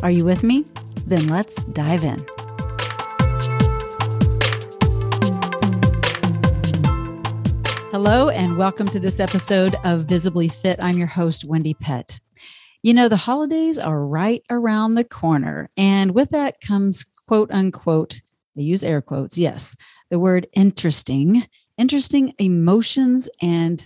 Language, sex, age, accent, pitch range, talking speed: English, female, 40-59, American, 155-210 Hz, 120 wpm